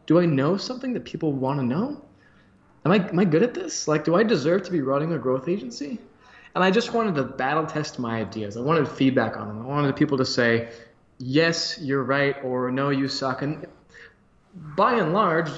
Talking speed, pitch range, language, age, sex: 215 wpm, 120-165 Hz, English, 20-39, male